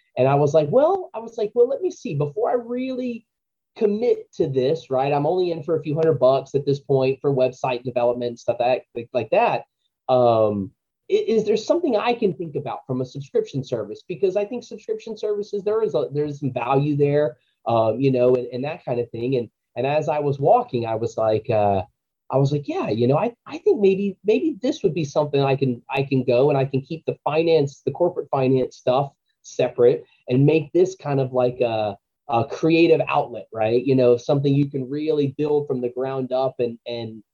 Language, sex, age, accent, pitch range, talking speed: English, male, 30-49, American, 125-160 Hz, 215 wpm